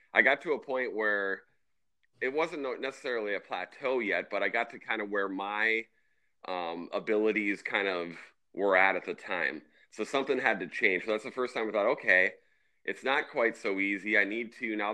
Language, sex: English, male